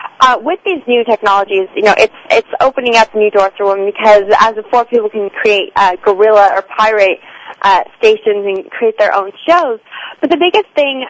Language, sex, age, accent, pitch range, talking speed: English, female, 20-39, American, 205-260 Hz, 195 wpm